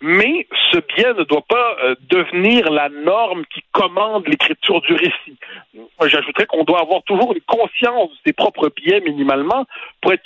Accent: French